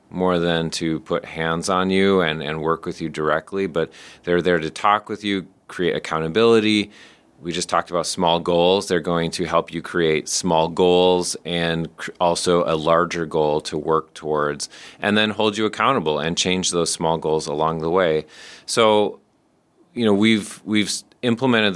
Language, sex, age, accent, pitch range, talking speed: English, male, 30-49, American, 85-95 Hz, 180 wpm